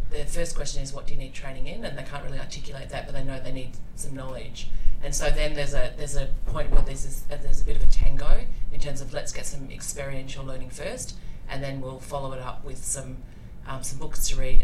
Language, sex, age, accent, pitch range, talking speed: English, female, 30-49, Australian, 130-145 Hz, 255 wpm